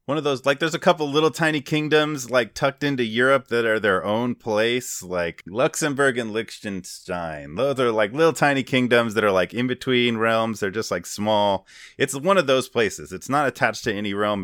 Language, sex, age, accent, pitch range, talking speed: English, male, 30-49, American, 95-125 Hz, 210 wpm